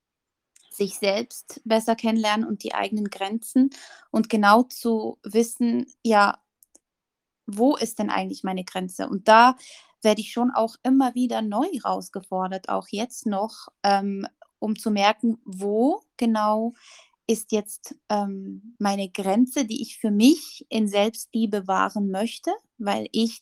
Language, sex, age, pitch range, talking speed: German, female, 20-39, 205-250 Hz, 130 wpm